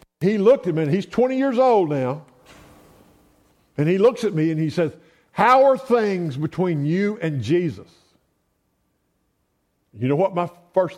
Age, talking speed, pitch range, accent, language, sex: 50-69, 165 wpm, 120-175 Hz, American, English, male